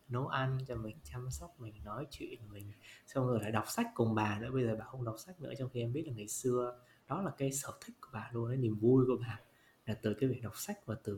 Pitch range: 110-140 Hz